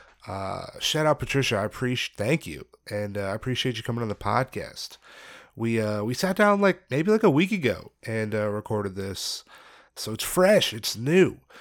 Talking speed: 195 wpm